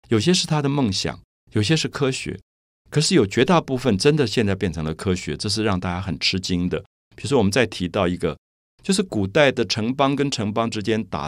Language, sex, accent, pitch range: Chinese, male, native, 90-130 Hz